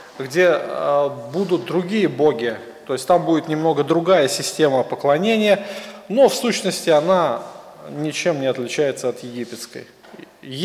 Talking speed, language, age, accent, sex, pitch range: 120 wpm, Russian, 20-39, native, male, 150-185 Hz